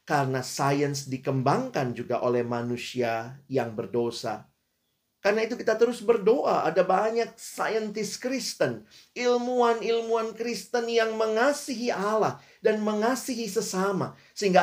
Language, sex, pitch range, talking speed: Indonesian, male, 125-215 Hz, 105 wpm